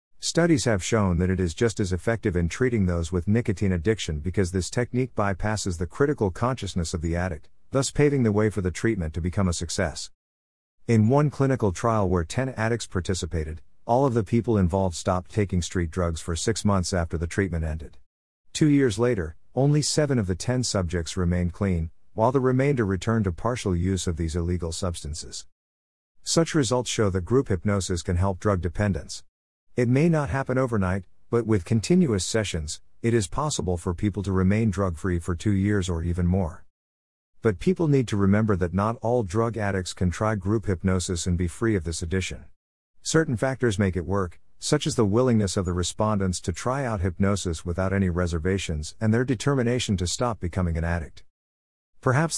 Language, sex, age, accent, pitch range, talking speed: English, male, 50-69, American, 90-115 Hz, 185 wpm